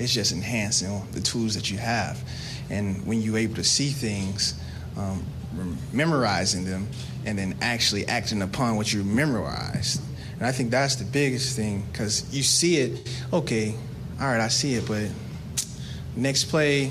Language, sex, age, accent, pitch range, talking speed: English, male, 20-39, American, 110-135 Hz, 165 wpm